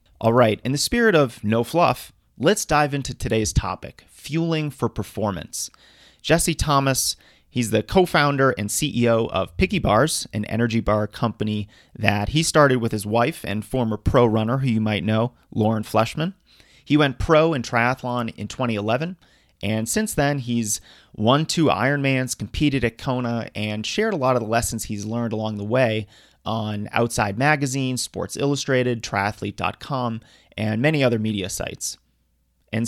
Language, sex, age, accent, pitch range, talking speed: English, male, 30-49, American, 110-145 Hz, 160 wpm